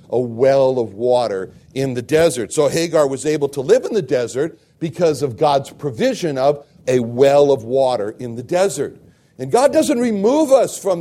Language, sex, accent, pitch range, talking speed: English, male, American, 130-185 Hz, 185 wpm